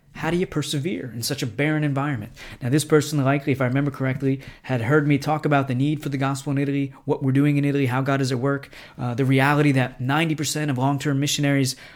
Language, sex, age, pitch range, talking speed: English, male, 20-39, 130-145 Hz, 235 wpm